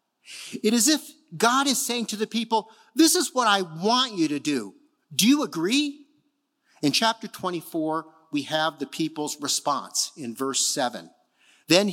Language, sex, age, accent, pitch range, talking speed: English, male, 50-69, American, 160-240 Hz, 165 wpm